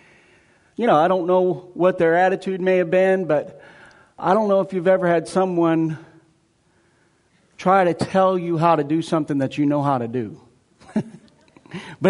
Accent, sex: American, male